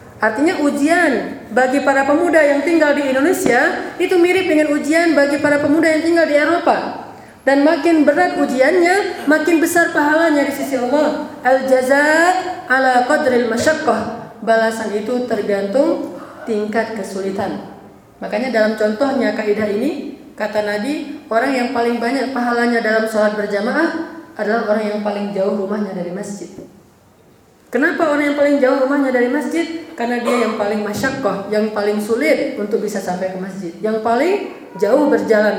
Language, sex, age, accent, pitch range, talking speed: Indonesian, female, 30-49, native, 215-295 Hz, 145 wpm